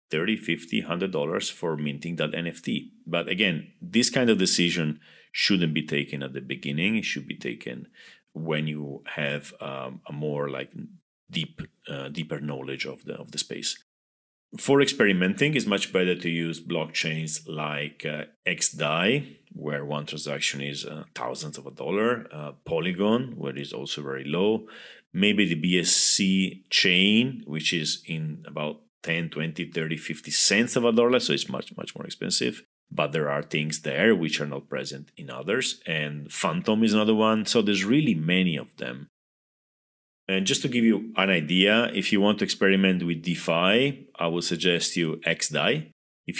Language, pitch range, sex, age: English, 75-100 Hz, male, 40-59